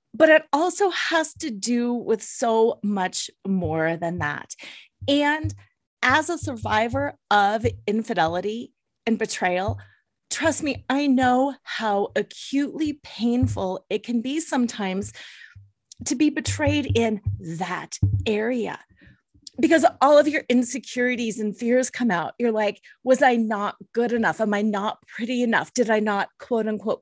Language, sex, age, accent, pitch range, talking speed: English, female, 30-49, American, 210-270 Hz, 140 wpm